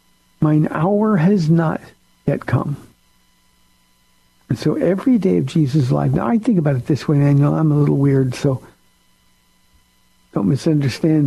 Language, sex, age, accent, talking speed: English, male, 60-79, American, 150 wpm